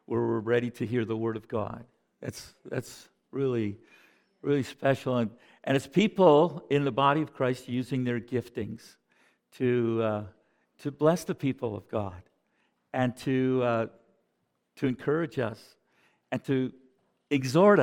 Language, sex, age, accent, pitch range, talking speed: Russian, male, 60-79, American, 125-170 Hz, 145 wpm